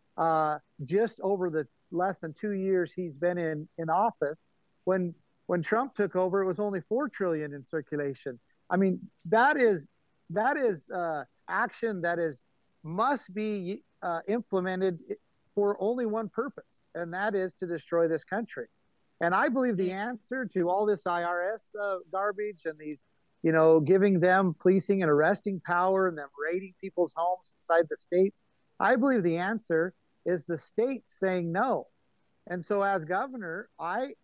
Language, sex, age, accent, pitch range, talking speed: English, male, 50-69, American, 170-210 Hz, 160 wpm